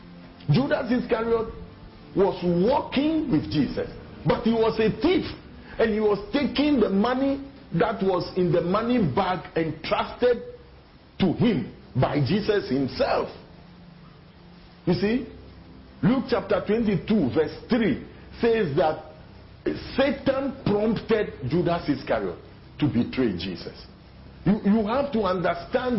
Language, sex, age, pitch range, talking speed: English, male, 50-69, 155-235 Hz, 115 wpm